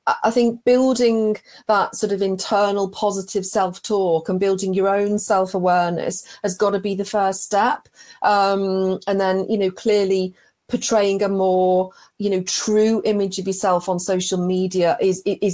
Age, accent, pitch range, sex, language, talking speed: 30-49, British, 180-205 Hz, female, English, 155 wpm